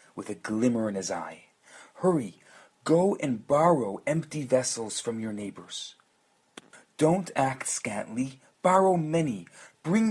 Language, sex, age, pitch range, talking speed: English, male, 40-59, 120-155 Hz, 125 wpm